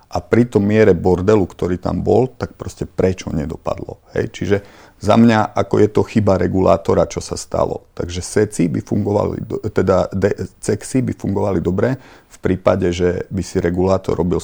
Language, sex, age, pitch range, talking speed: Czech, male, 40-59, 85-100 Hz, 170 wpm